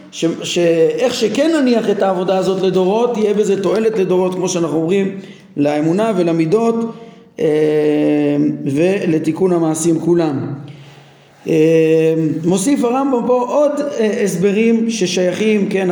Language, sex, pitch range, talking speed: Hebrew, male, 170-225 Hz, 100 wpm